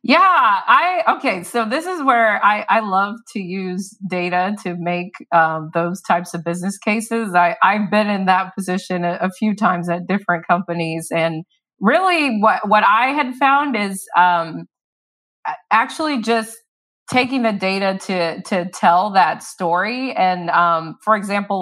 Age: 30-49